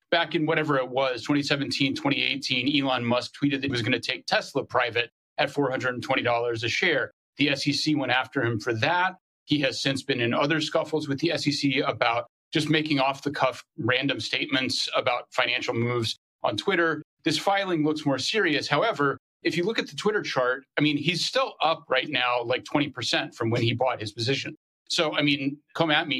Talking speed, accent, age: 190 wpm, American, 30-49